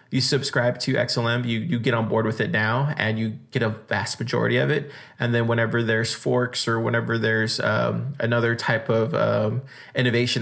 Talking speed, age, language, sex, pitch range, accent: 195 wpm, 20-39, English, male, 115-135 Hz, American